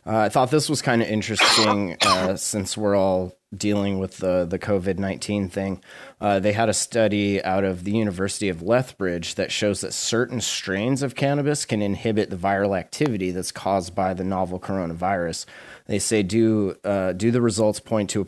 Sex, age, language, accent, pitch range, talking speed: male, 30-49, English, American, 95-110 Hz, 190 wpm